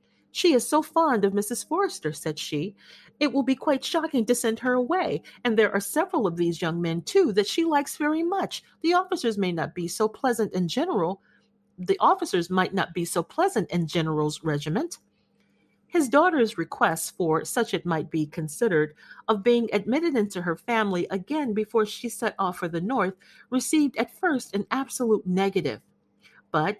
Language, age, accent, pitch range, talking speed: English, 40-59, American, 175-255 Hz, 180 wpm